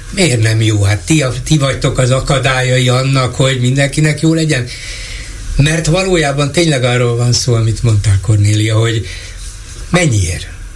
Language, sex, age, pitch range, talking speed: Hungarian, male, 60-79, 110-150 Hz, 150 wpm